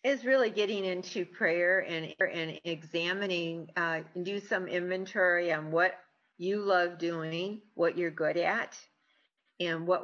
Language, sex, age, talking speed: English, female, 50-69, 145 wpm